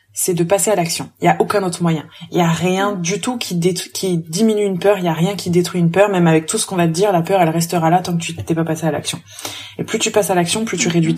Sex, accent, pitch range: female, French, 165-200 Hz